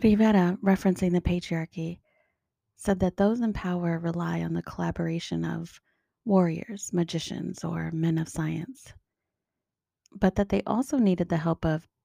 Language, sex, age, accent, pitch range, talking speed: English, female, 30-49, American, 165-200 Hz, 140 wpm